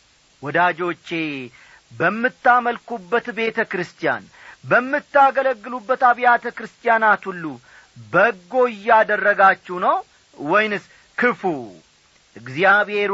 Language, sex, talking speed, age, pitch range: Amharic, male, 60 wpm, 40-59, 170-225 Hz